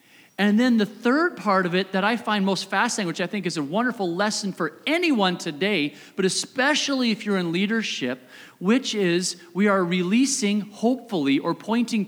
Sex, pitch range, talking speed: male, 165-225 Hz, 180 wpm